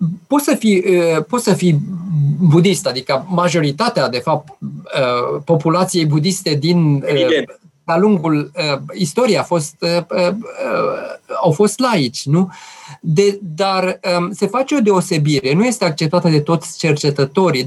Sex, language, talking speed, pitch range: male, Romanian, 110 wpm, 150-200 Hz